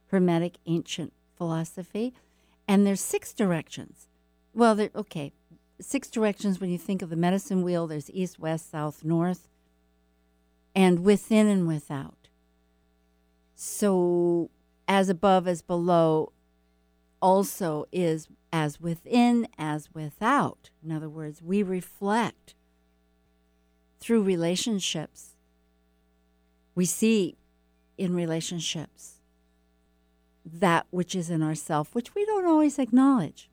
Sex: female